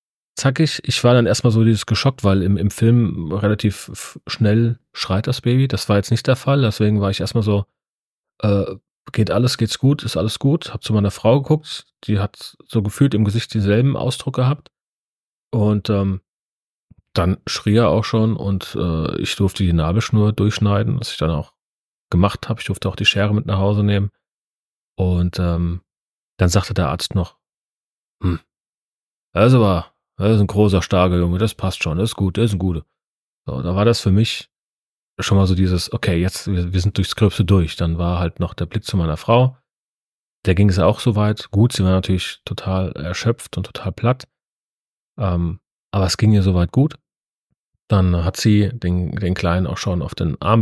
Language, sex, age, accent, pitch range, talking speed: German, male, 30-49, German, 90-115 Hz, 195 wpm